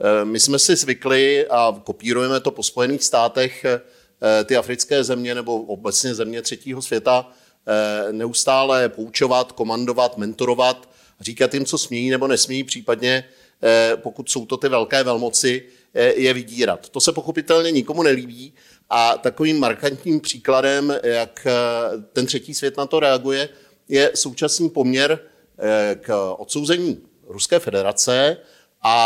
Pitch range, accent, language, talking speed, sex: 120-150 Hz, native, Czech, 125 wpm, male